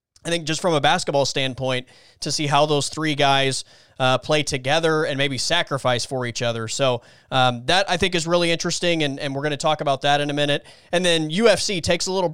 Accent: American